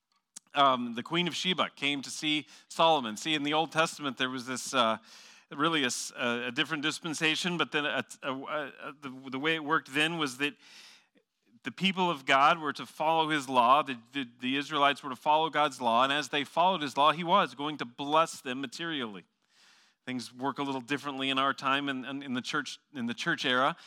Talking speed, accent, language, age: 205 wpm, American, English, 40-59